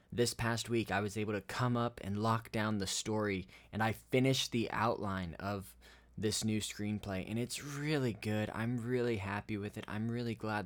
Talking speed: 195 wpm